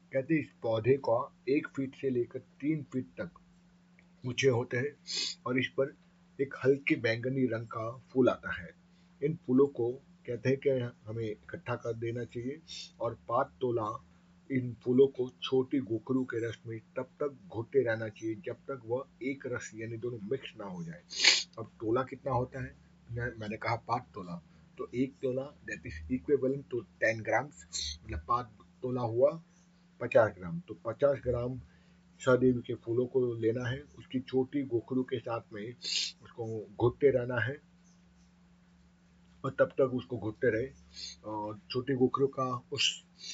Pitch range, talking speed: 115-140 Hz, 160 wpm